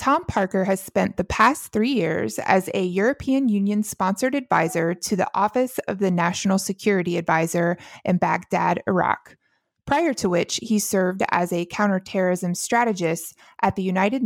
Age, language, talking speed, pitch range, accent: 20-39, English, 150 wpm, 180-230 Hz, American